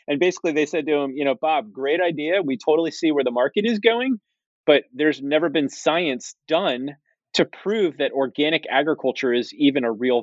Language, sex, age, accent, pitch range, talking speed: English, male, 30-49, American, 125-155 Hz, 200 wpm